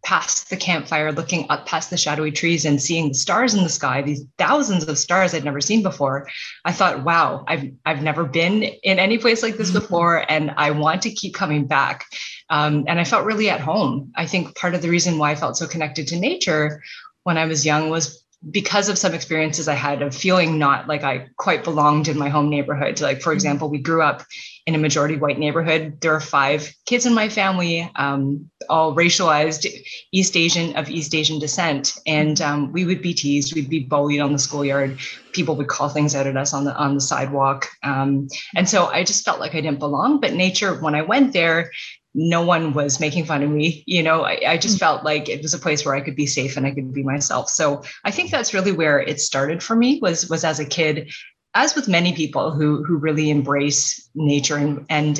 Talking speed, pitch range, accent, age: 225 wpm, 145-180 Hz, American, 20-39